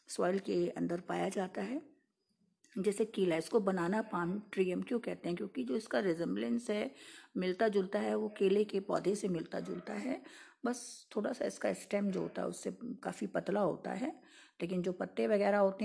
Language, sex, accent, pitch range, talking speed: Hindi, female, native, 165-225 Hz, 190 wpm